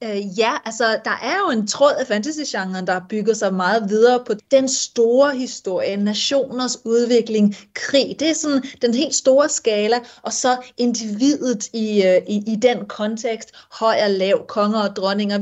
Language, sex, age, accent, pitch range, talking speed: Danish, female, 30-49, native, 200-245 Hz, 165 wpm